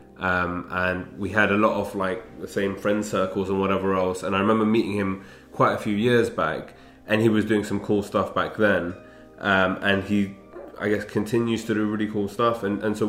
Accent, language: British, English